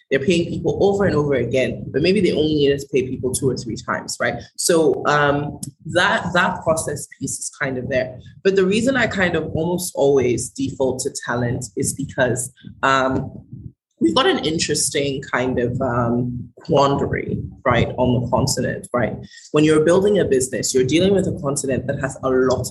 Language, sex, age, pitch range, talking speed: English, female, 20-39, 125-150 Hz, 190 wpm